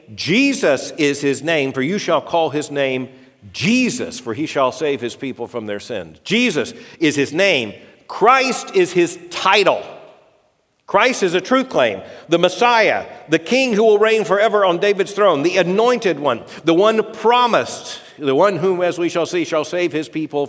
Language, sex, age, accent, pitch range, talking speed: English, male, 50-69, American, 135-200 Hz, 180 wpm